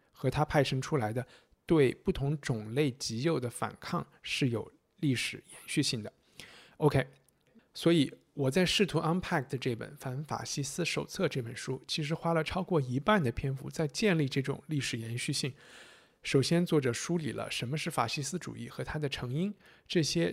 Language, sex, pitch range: Chinese, male, 120-160 Hz